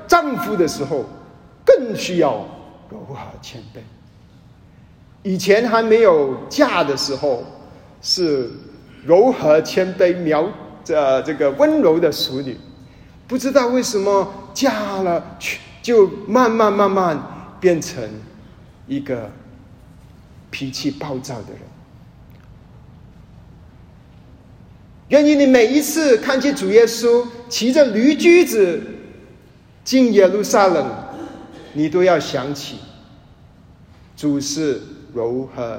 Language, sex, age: Chinese, male, 50-69